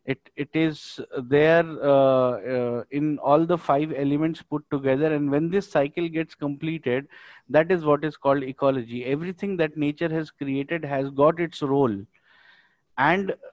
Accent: native